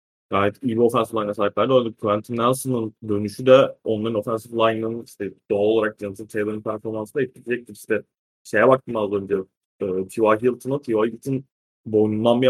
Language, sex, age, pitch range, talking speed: Turkish, male, 20-39, 105-120 Hz, 165 wpm